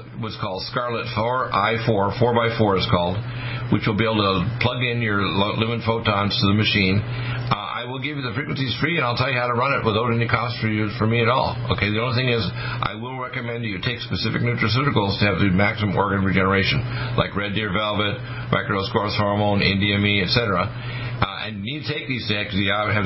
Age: 50-69